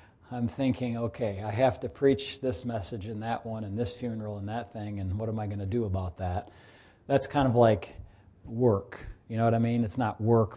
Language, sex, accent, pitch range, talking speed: English, male, American, 105-120 Hz, 225 wpm